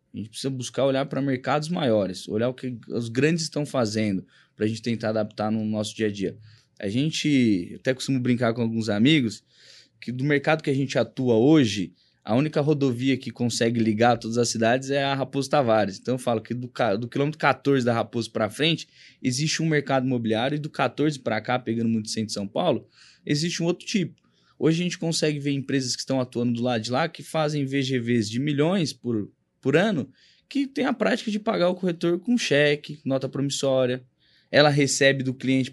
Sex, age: male, 20-39